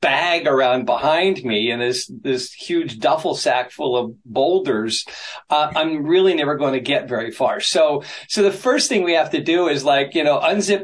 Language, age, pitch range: English, 40-59, 125-175 Hz